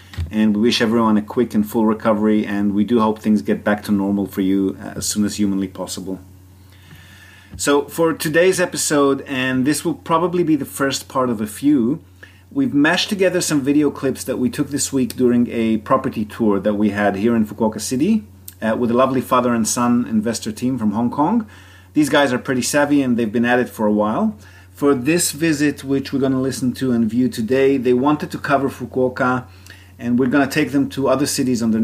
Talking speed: 215 wpm